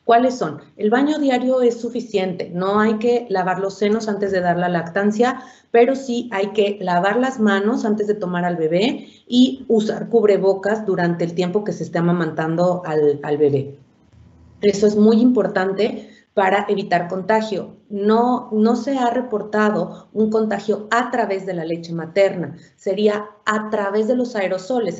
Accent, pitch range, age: Mexican, 180-215 Hz, 30-49